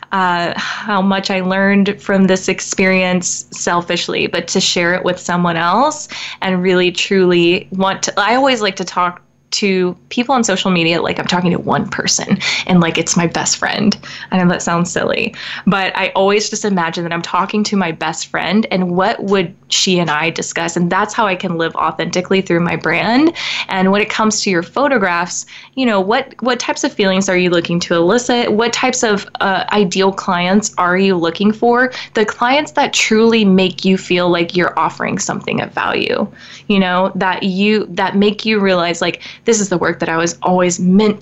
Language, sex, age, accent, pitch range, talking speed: English, female, 20-39, American, 175-210 Hz, 200 wpm